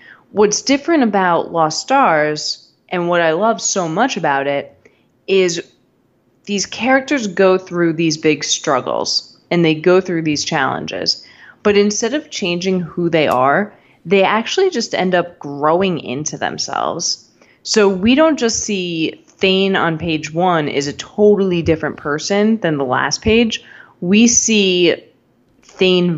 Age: 20-39